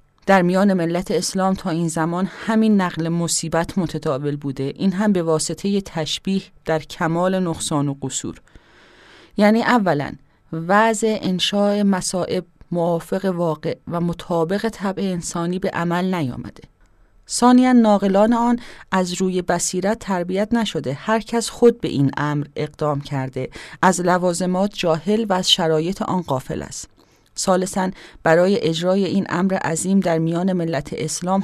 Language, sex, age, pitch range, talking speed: English, female, 30-49, 155-190 Hz, 135 wpm